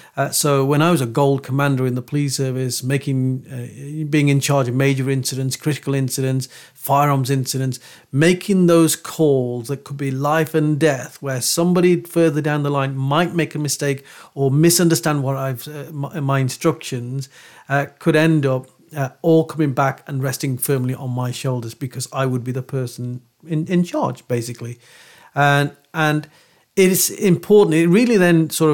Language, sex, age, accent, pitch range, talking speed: English, male, 40-59, British, 130-155 Hz, 175 wpm